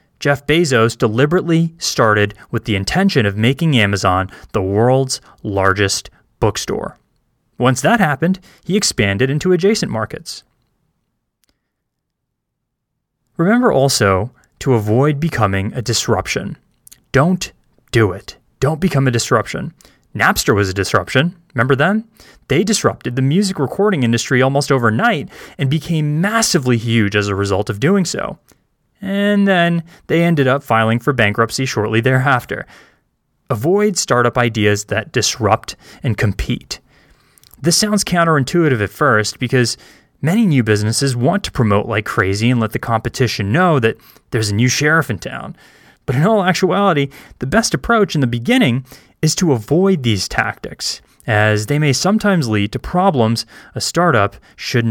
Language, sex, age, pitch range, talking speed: English, male, 20-39, 110-170 Hz, 140 wpm